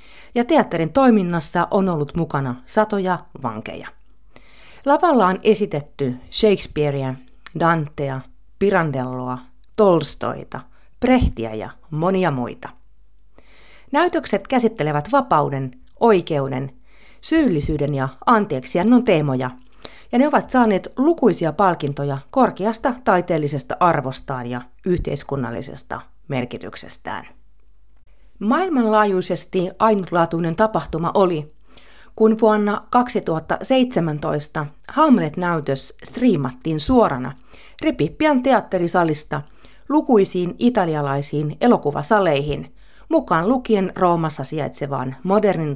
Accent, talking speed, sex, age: native, 75 wpm, female, 30-49